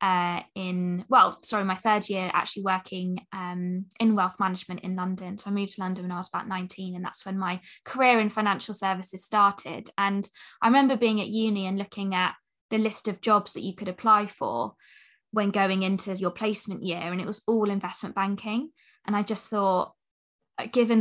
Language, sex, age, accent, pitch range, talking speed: English, female, 20-39, British, 185-215 Hz, 195 wpm